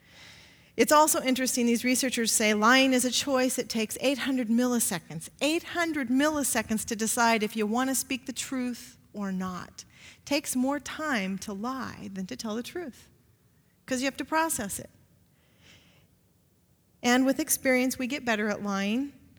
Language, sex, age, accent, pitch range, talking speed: English, female, 40-59, American, 225-265 Hz, 160 wpm